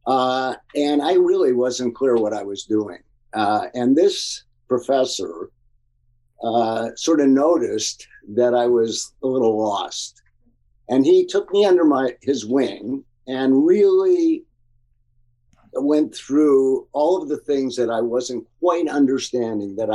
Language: English